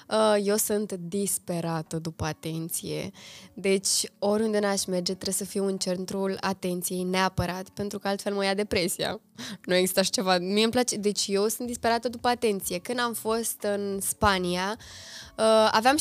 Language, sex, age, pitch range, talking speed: Romanian, female, 20-39, 190-225 Hz, 155 wpm